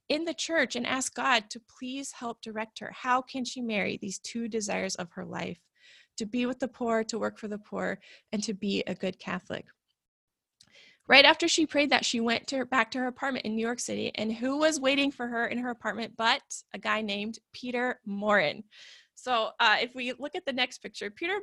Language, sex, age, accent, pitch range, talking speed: English, female, 20-39, American, 220-270 Hz, 220 wpm